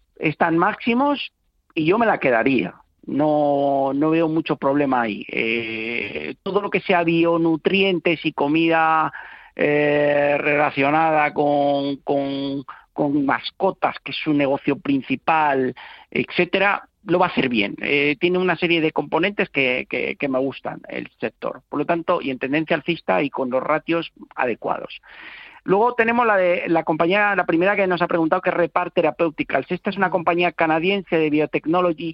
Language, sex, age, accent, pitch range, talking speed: Spanish, male, 40-59, Spanish, 145-180 Hz, 160 wpm